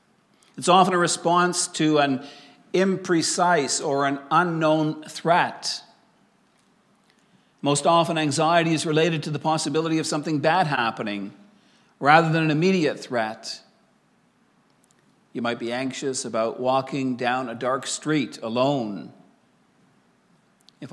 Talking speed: 115 wpm